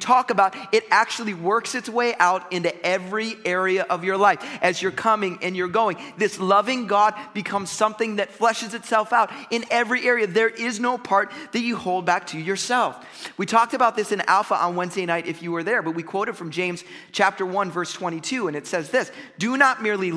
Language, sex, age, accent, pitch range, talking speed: English, male, 30-49, American, 175-230 Hz, 210 wpm